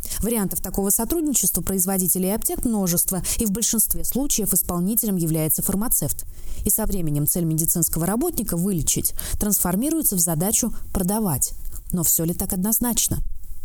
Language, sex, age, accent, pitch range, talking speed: Russian, female, 20-39, native, 180-235 Hz, 135 wpm